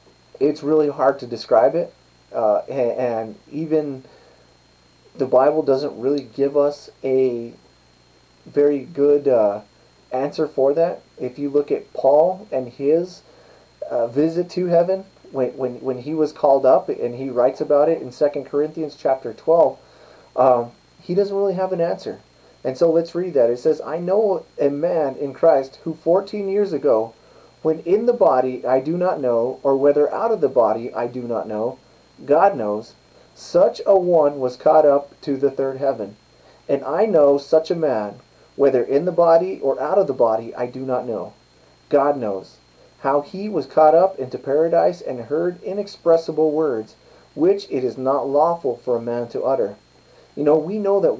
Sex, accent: male, American